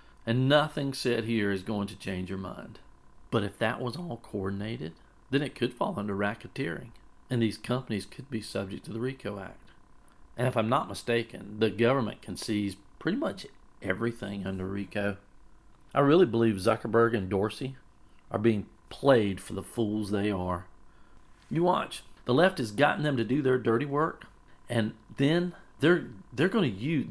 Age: 40-59